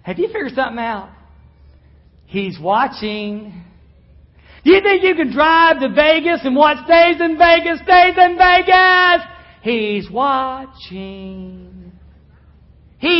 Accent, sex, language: American, male, English